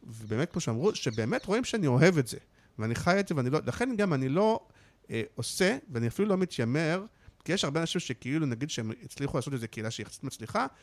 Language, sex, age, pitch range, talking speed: Hebrew, male, 50-69, 115-170 Hz, 215 wpm